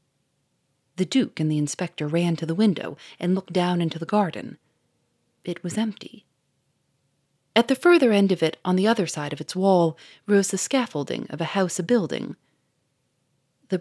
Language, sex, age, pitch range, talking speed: English, female, 30-49, 150-185 Hz, 170 wpm